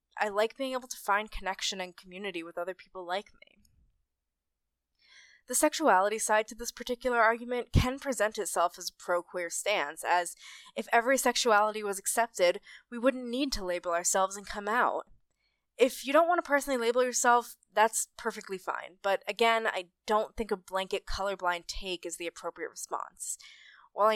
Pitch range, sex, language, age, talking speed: 185-245 Hz, female, English, 20-39, 170 wpm